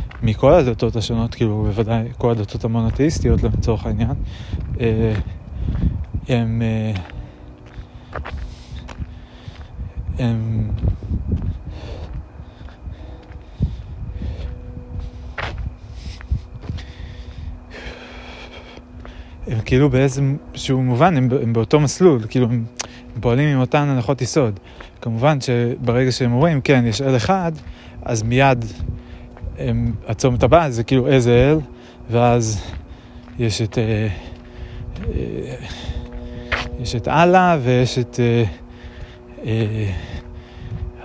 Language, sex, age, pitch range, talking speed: Hebrew, male, 30-49, 90-125 Hz, 80 wpm